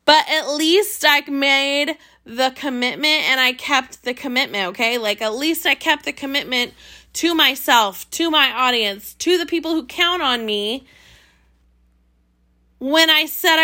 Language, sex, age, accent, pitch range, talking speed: English, female, 20-39, American, 235-325 Hz, 155 wpm